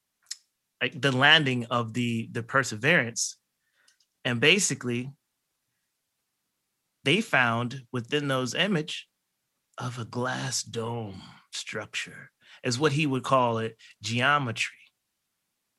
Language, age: English, 30-49